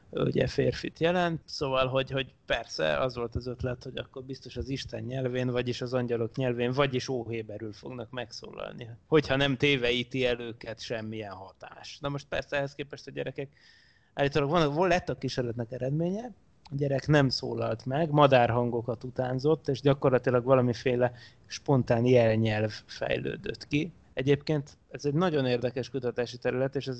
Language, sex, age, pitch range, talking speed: Hungarian, male, 20-39, 120-135 Hz, 150 wpm